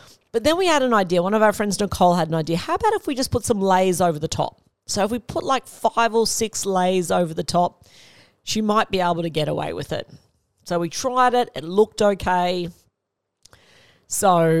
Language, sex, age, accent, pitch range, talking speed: English, female, 40-59, Australian, 170-210 Hz, 220 wpm